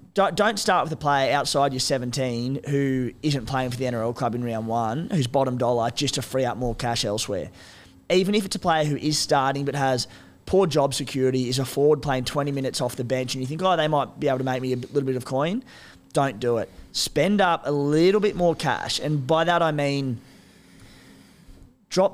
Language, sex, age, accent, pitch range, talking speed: English, male, 20-39, Australian, 125-155 Hz, 220 wpm